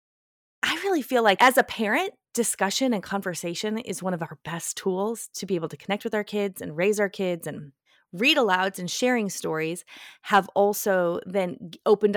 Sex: female